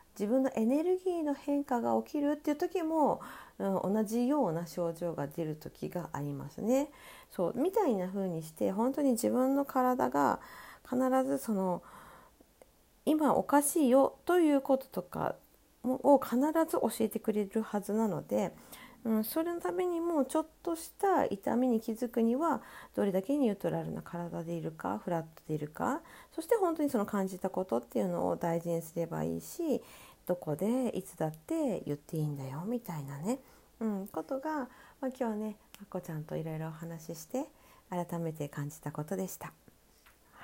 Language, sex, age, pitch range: Japanese, female, 40-59, 170-265 Hz